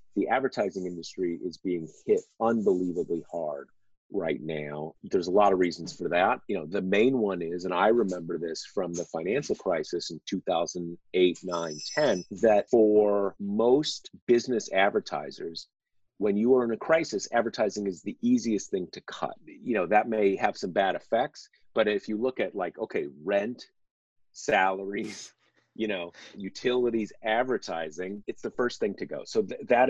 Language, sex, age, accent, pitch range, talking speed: English, male, 40-59, American, 85-105 Hz, 165 wpm